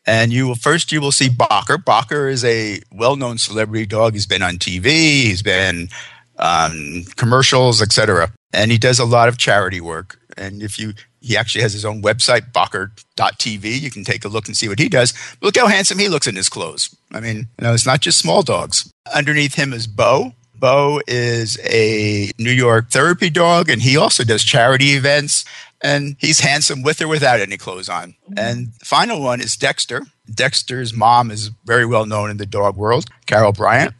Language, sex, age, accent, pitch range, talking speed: English, male, 50-69, American, 110-140 Hz, 200 wpm